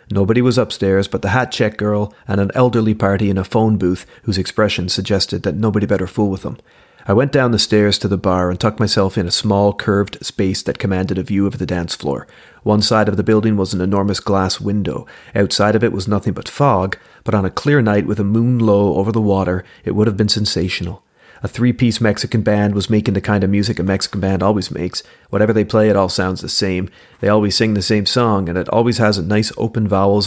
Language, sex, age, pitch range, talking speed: English, male, 30-49, 95-110 Hz, 235 wpm